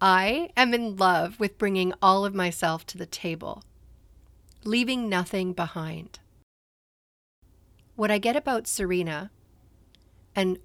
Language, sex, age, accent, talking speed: English, female, 40-59, American, 120 wpm